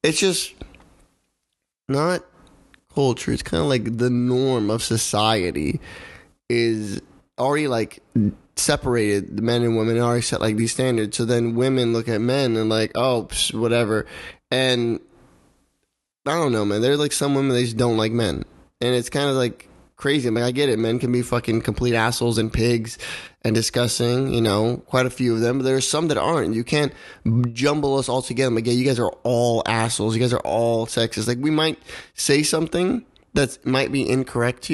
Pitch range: 115-135 Hz